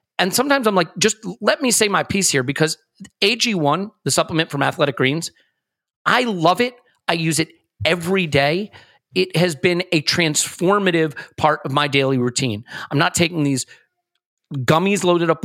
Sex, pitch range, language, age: male, 140-180 Hz, English, 30-49